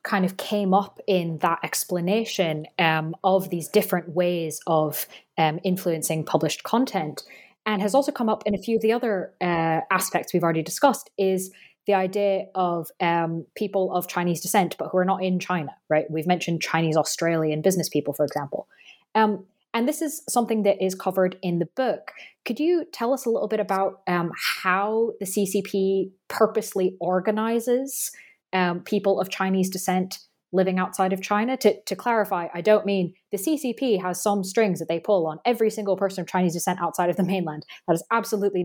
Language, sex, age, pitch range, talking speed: English, female, 20-39, 170-205 Hz, 185 wpm